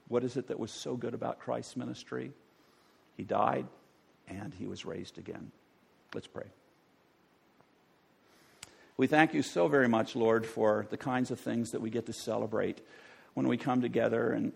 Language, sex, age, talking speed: English, male, 50-69, 170 wpm